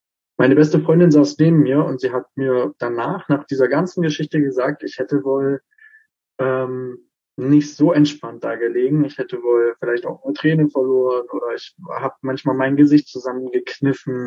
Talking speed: 170 wpm